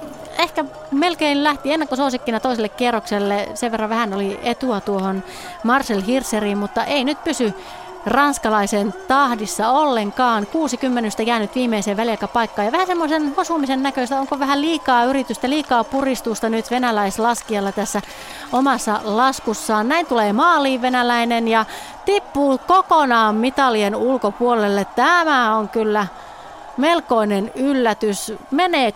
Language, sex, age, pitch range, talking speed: Finnish, female, 30-49, 215-280 Hz, 120 wpm